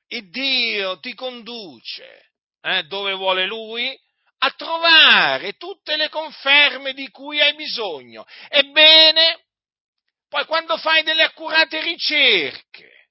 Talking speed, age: 110 wpm, 50-69